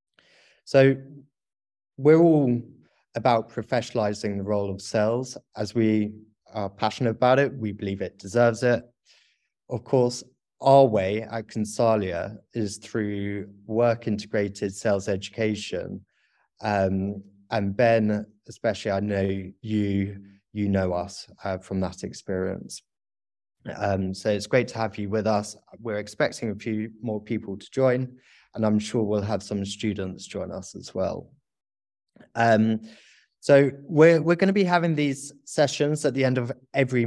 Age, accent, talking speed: 20-39, British, 145 wpm